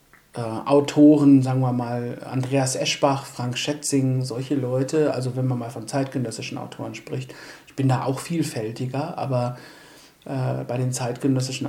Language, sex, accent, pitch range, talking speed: English, male, German, 130-155 Hz, 150 wpm